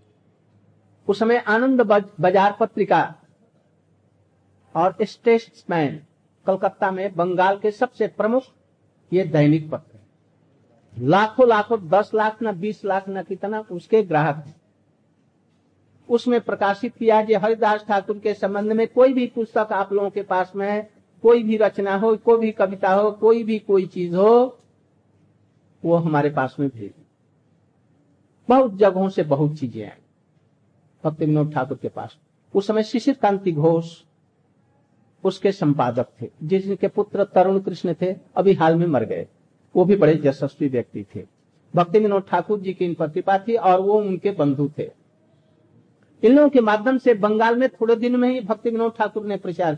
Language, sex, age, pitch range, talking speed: Hindi, male, 60-79, 155-220 Hz, 140 wpm